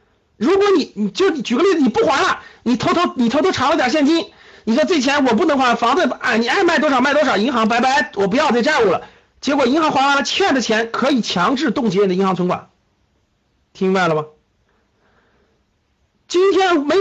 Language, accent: Chinese, native